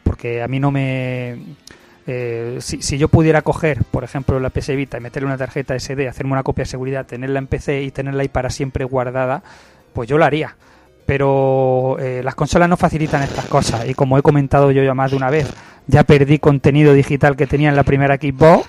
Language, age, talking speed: Spanish, 30-49, 215 wpm